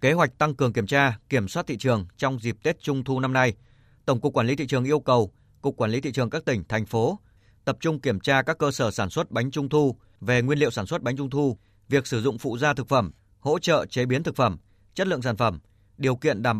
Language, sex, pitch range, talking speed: Vietnamese, male, 110-145 Hz, 270 wpm